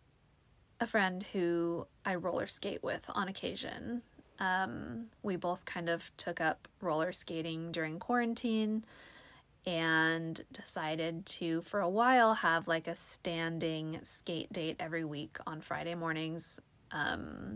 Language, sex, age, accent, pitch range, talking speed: English, female, 20-39, American, 160-210 Hz, 130 wpm